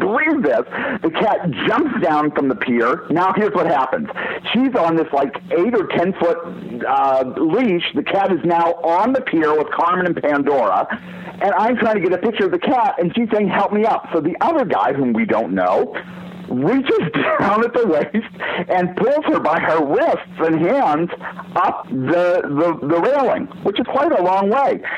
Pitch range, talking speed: 170-235 Hz, 195 wpm